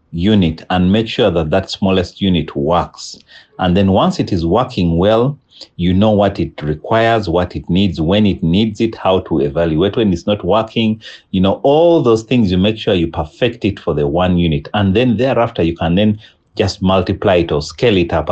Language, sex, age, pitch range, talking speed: English, male, 40-59, 80-105 Hz, 205 wpm